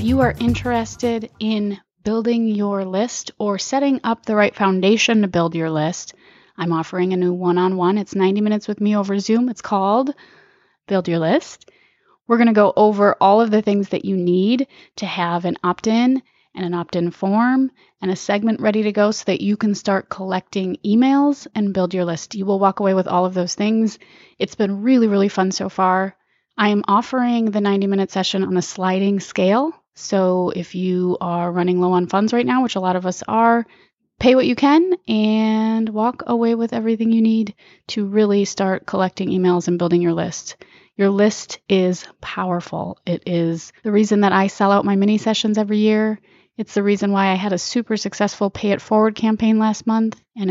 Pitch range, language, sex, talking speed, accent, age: 185-225 Hz, English, female, 205 wpm, American, 30-49